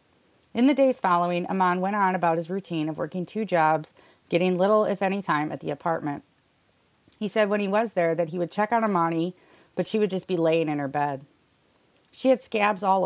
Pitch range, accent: 150-185 Hz, American